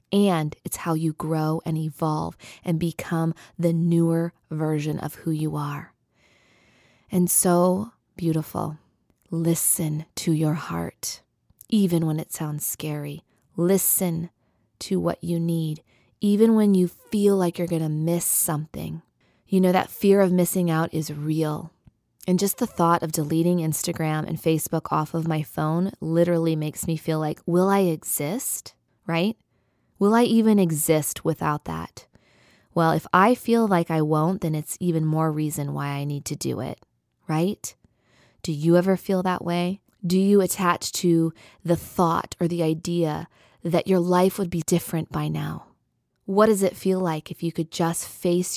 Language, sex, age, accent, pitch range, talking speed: English, female, 20-39, American, 155-180 Hz, 165 wpm